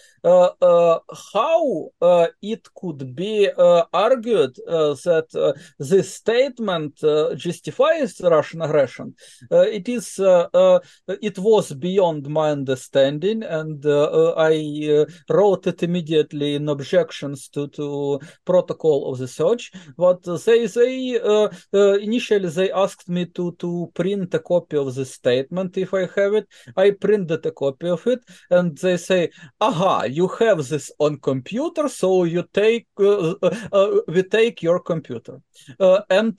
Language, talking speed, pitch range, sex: English, 150 wpm, 160-215 Hz, male